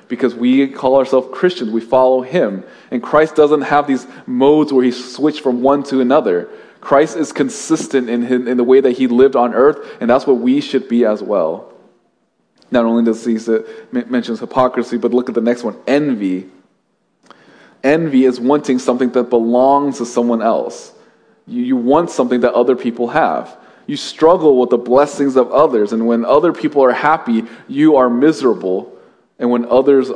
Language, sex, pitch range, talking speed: English, male, 120-140 Hz, 180 wpm